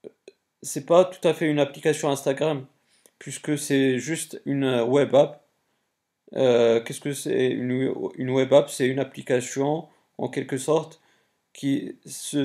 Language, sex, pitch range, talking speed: French, male, 130-145 Hz, 140 wpm